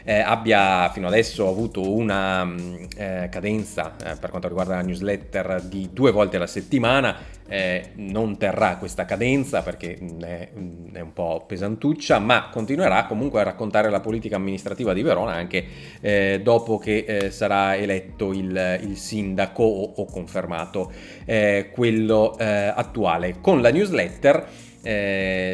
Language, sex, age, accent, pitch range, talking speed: Italian, male, 30-49, native, 95-115 Hz, 140 wpm